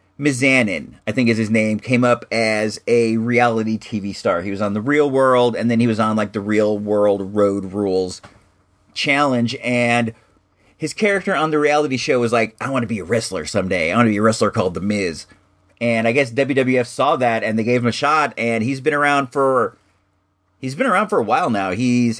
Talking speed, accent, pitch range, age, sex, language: 220 wpm, American, 100-145 Hz, 30-49, male, English